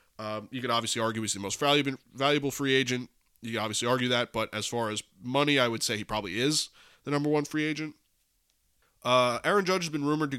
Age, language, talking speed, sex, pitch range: 20-39, English, 225 wpm, male, 110-130 Hz